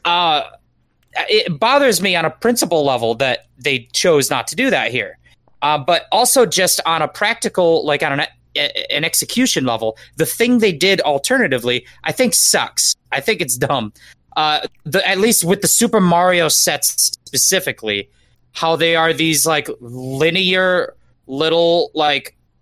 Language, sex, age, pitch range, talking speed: English, male, 30-49, 140-200 Hz, 155 wpm